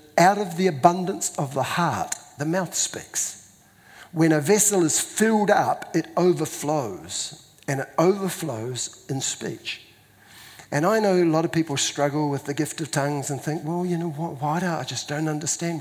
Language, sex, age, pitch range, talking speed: English, male, 50-69, 135-160 Hz, 180 wpm